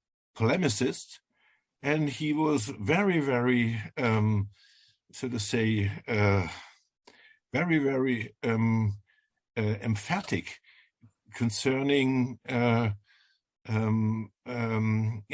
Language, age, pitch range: English, 50-69, 105-135 Hz